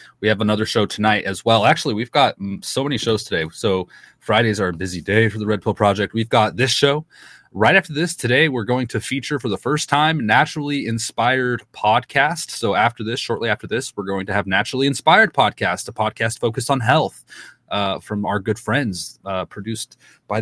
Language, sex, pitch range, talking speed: English, male, 100-140 Hz, 205 wpm